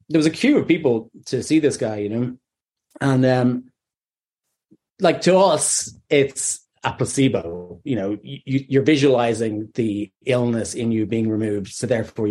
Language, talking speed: English, 155 wpm